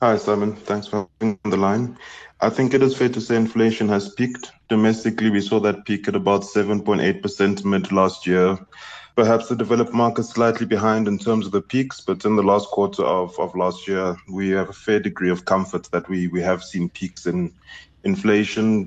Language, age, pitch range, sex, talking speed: English, 20-39, 90-110 Hz, male, 210 wpm